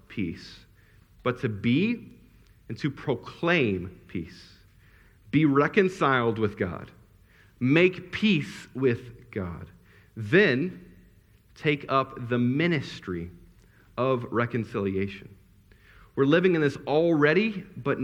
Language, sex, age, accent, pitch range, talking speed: English, male, 50-69, American, 100-130 Hz, 95 wpm